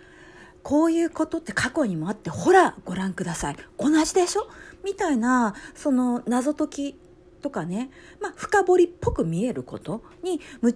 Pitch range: 215-340 Hz